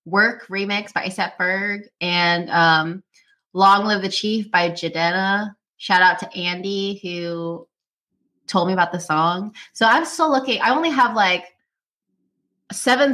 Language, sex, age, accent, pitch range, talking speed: English, female, 20-39, American, 170-215 Hz, 145 wpm